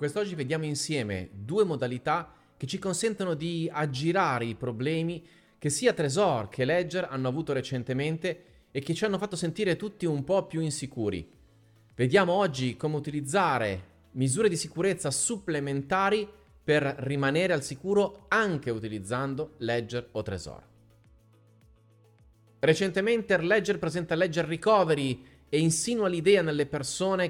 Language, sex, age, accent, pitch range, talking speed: Italian, male, 30-49, native, 130-180 Hz, 125 wpm